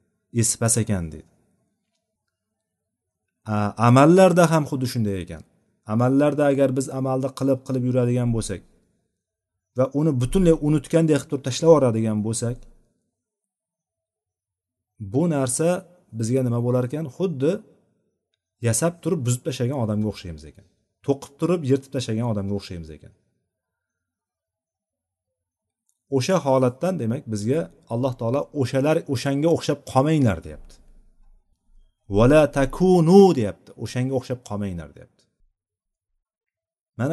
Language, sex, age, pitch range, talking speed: Russian, male, 40-59, 100-135 Hz, 80 wpm